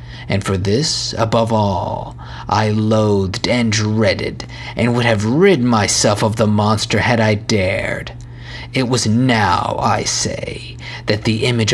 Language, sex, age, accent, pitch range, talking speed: English, male, 30-49, American, 110-130 Hz, 145 wpm